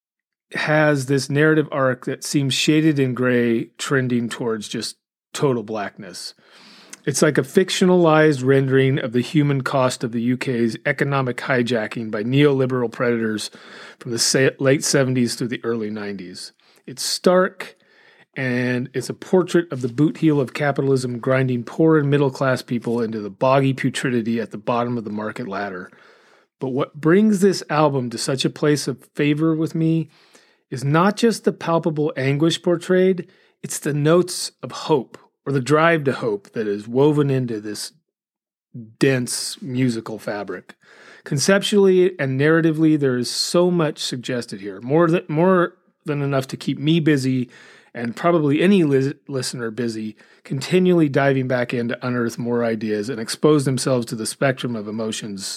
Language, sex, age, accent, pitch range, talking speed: English, male, 40-59, American, 120-155 Hz, 155 wpm